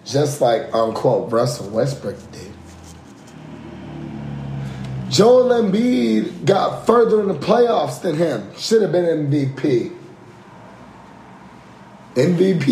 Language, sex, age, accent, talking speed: English, male, 30-49, American, 95 wpm